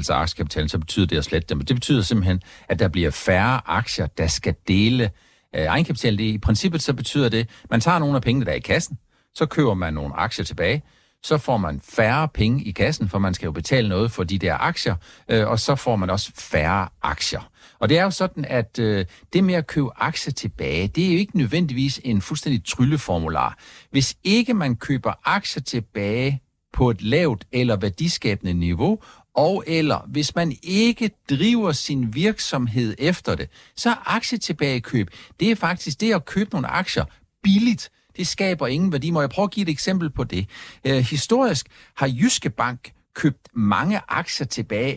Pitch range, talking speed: 110-175 Hz, 185 wpm